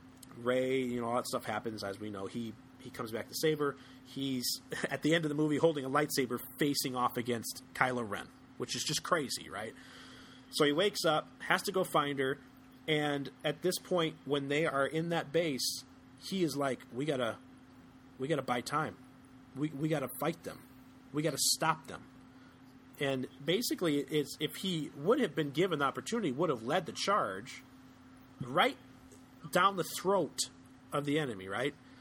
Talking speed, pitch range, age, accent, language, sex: 180 wpm, 130-160 Hz, 30-49, American, English, male